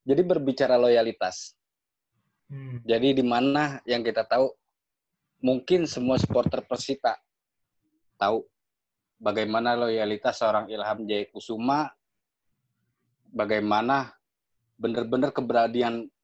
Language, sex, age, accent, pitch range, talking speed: Indonesian, male, 20-39, native, 110-130 Hz, 80 wpm